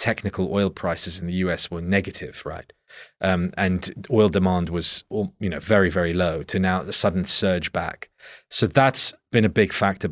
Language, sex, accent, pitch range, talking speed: English, male, British, 90-110 Hz, 185 wpm